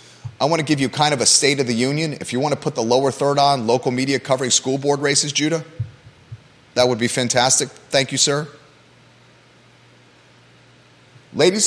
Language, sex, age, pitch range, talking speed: English, male, 30-49, 105-135 Hz, 185 wpm